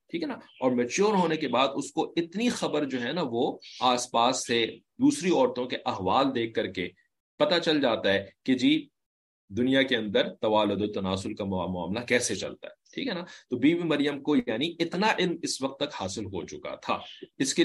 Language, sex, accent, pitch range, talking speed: English, male, Indian, 125-195 Hz, 195 wpm